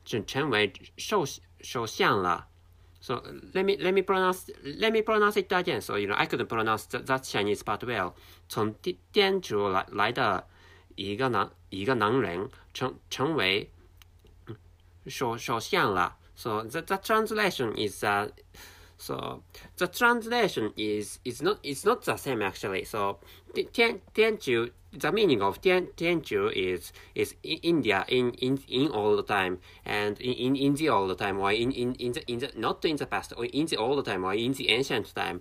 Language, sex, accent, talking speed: English, male, Japanese, 145 wpm